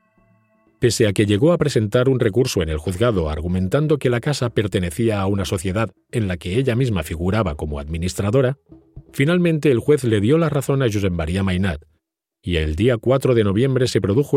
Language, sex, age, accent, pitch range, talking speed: Spanish, male, 40-59, Spanish, 95-130 Hz, 190 wpm